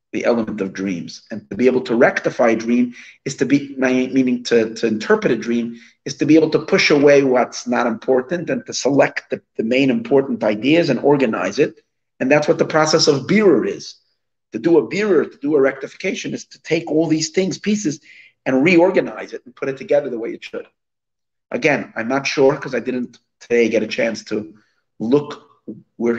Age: 40-59